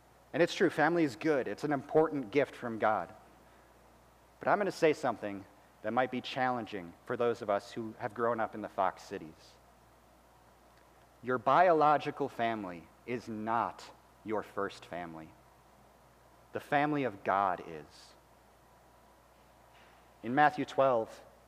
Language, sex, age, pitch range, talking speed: English, male, 40-59, 110-145 Hz, 140 wpm